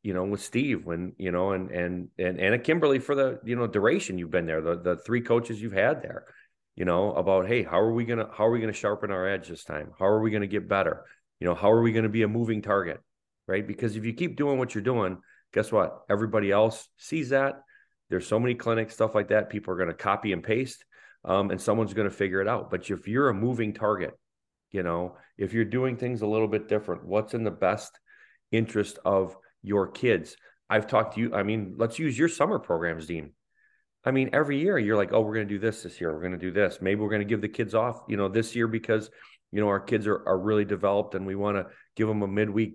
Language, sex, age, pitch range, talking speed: English, male, 40-59, 95-115 Hz, 260 wpm